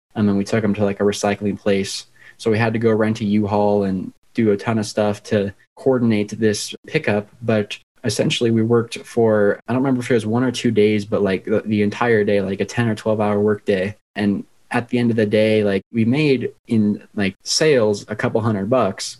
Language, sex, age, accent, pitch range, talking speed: English, male, 20-39, American, 105-115 Hz, 230 wpm